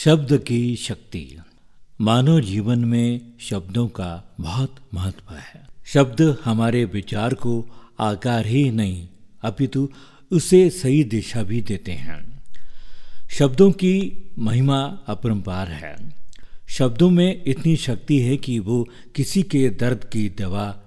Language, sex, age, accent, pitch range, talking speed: Hindi, male, 50-69, native, 105-140 Hz, 120 wpm